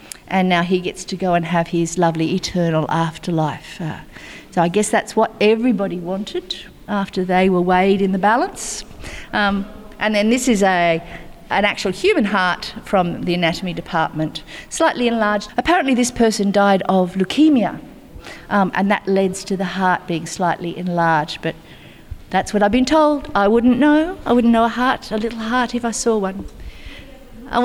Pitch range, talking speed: 190-235 Hz, 175 wpm